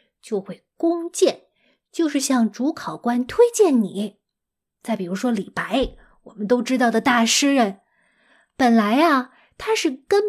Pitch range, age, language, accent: 215-295 Hz, 20-39, Chinese, native